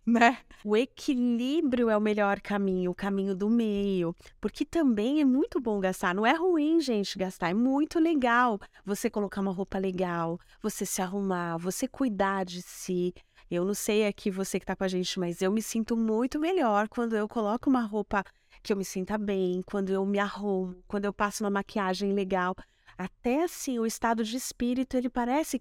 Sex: female